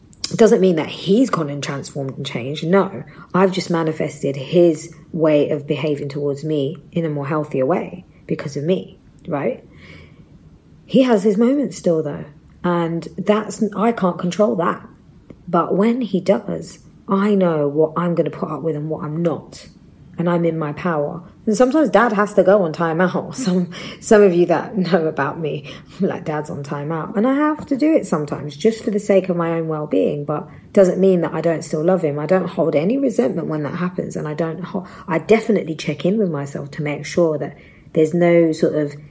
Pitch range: 155-190 Hz